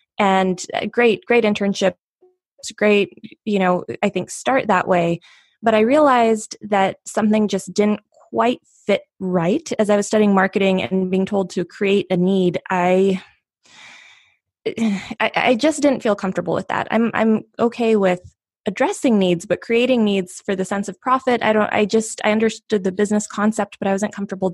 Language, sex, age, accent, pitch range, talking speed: English, female, 20-39, American, 190-220 Hz, 175 wpm